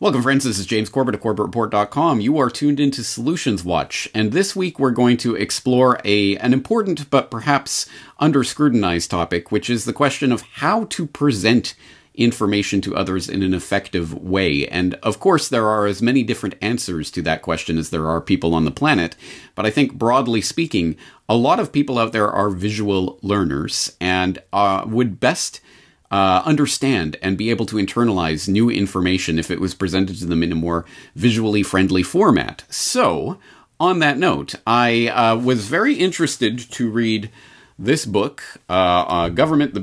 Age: 40-59